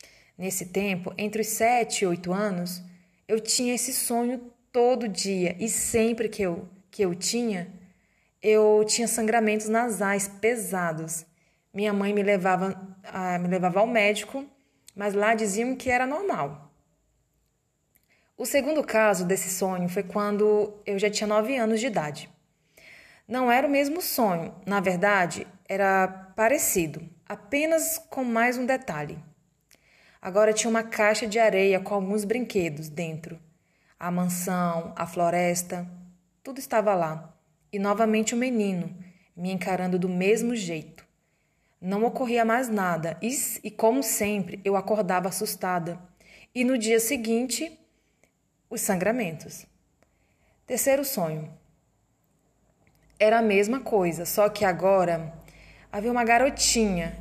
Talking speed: 125 wpm